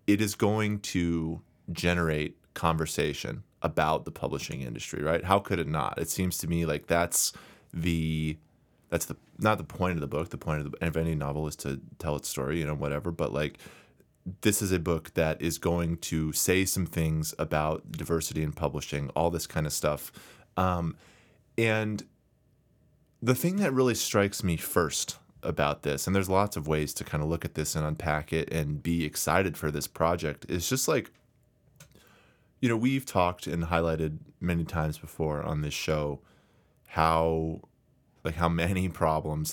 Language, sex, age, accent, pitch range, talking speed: English, male, 20-39, American, 75-90 Hz, 180 wpm